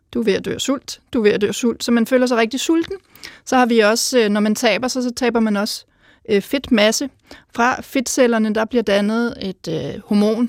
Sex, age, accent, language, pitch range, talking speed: female, 30-49, native, Danish, 215-255 Hz, 205 wpm